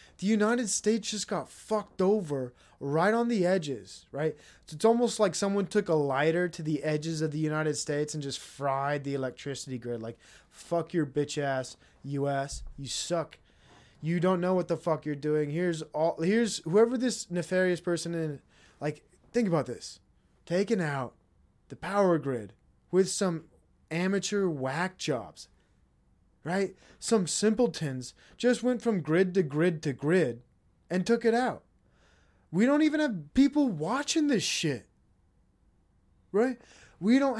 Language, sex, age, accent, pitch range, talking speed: English, male, 20-39, American, 135-210 Hz, 155 wpm